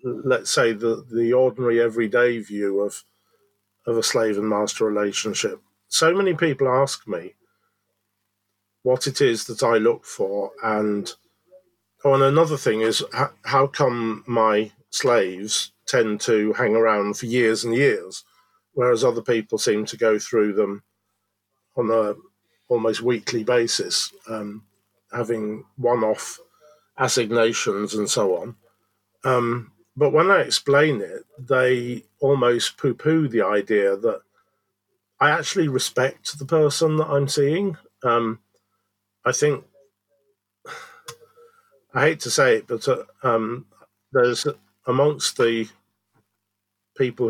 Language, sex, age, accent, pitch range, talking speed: English, male, 40-59, British, 105-140 Hz, 130 wpm